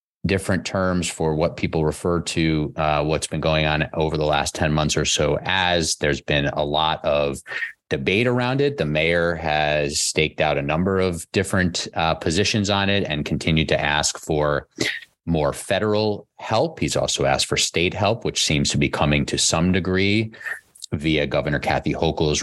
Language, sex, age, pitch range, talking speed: English, male, 30-49, 75-95 Hz, 180 wpm